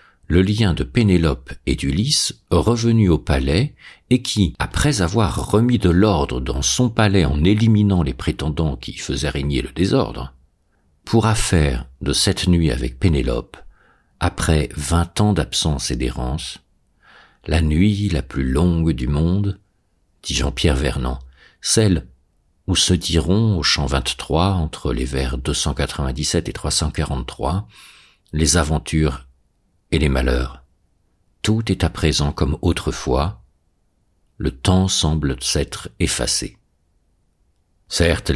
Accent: French